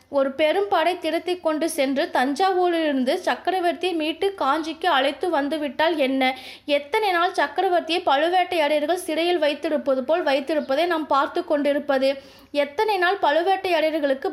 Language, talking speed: Tamil, 105 wpm